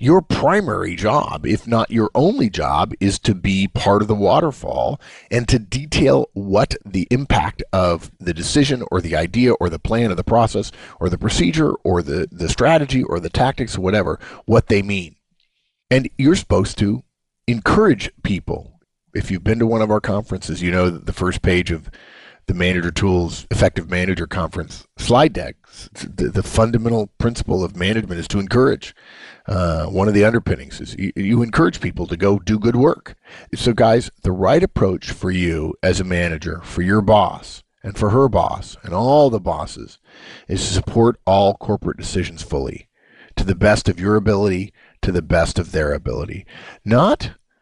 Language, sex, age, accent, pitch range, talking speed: English, male, 50-69, American, 90-115 Hz, 180 wpm